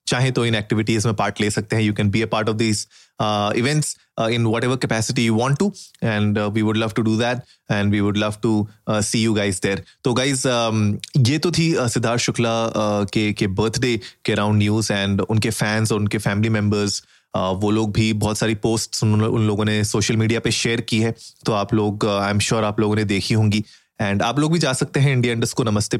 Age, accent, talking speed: 30-49, native, 165 wpm